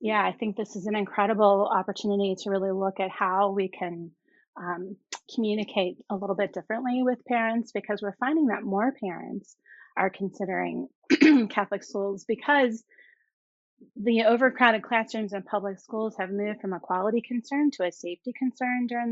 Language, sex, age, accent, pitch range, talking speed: English, female, 30-49, American, 190-225 Hz, 160 wpm